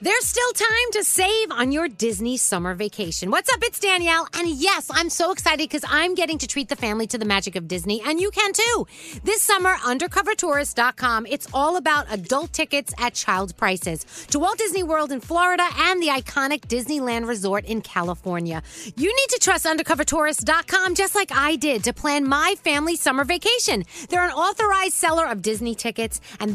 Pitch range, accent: 235-370 Hz, American